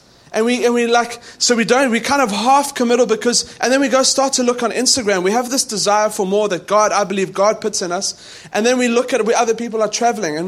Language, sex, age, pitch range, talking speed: English, male, 20-39, 210-245 Hz, 275 wpm